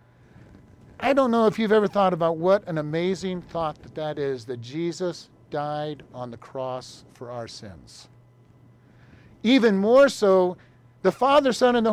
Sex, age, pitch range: male, 50-69, 130-205 Hz